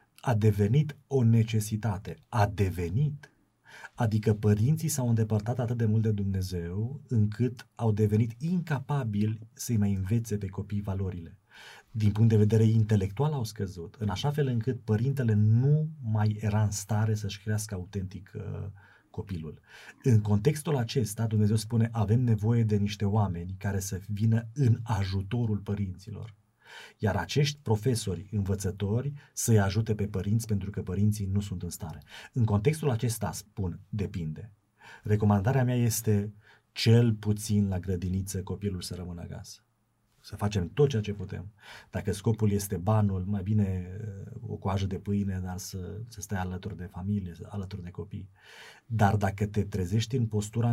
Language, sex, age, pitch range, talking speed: Romanian, male, 30-49, 100-115 Hz, 150 wpm